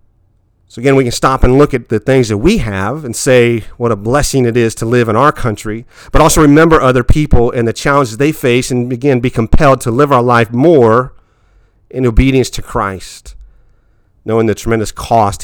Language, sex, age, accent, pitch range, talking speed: English, male, 40-59, American, 105-130 Hz, 200 wpm